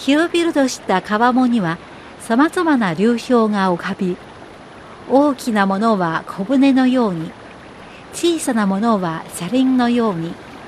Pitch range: 195-275 Hz